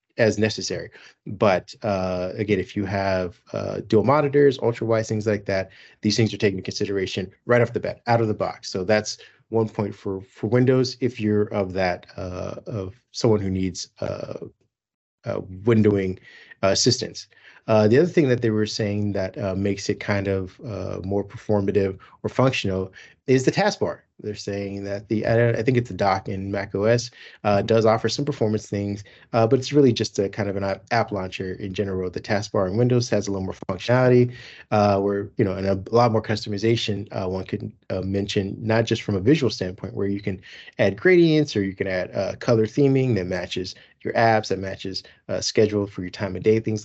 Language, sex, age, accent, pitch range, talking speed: English, male, 30-49, American, 95-115 Hz, 200 wpm